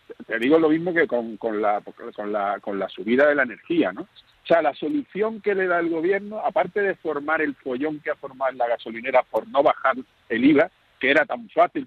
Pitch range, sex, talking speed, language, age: 130-200 Hz, male, 225 wpm, Spanish, 50-69